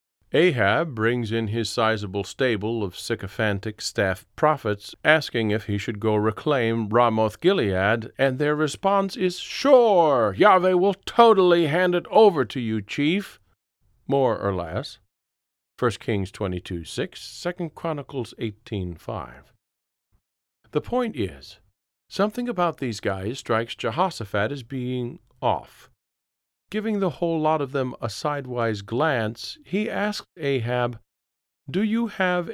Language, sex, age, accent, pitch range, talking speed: English, male, 50-69, American, 100-155 Hz, 125 wpm